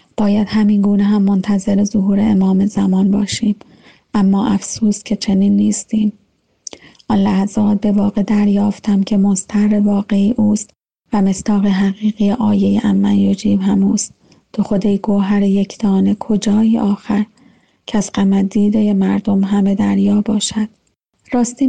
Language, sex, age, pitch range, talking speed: Persian, female, 30-49, 200-220 Hz, 120 wpm